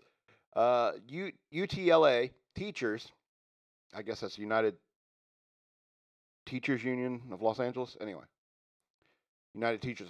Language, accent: English, American